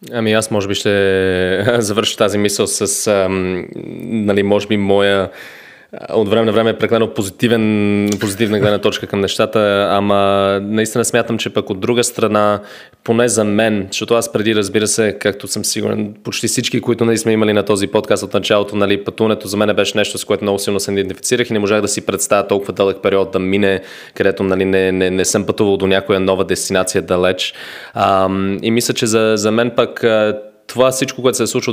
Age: 20-39